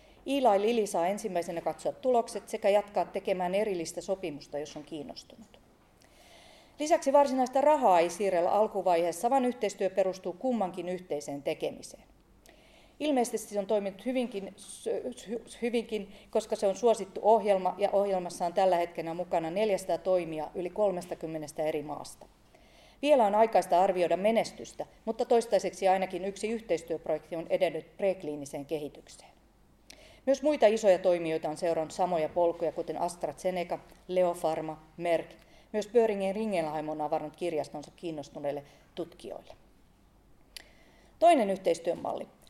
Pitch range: 165-215 Hz